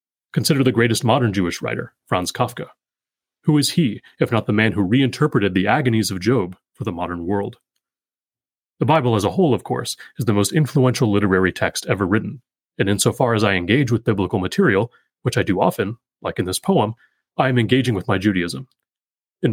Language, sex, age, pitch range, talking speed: English, male, 30-49, 105-135 Hz, 195 wpm